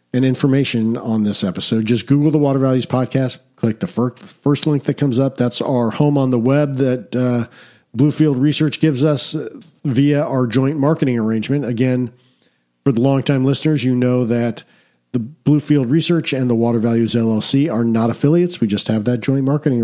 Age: 50-69